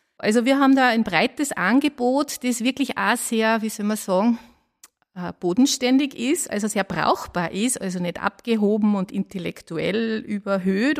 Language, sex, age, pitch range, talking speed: German, female, 50-69, 195-235 Hz, 145 wpm